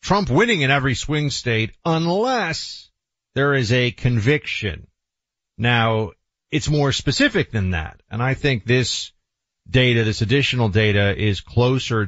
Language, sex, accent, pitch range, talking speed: English, male, American, 100-140 Hz, 135 wpm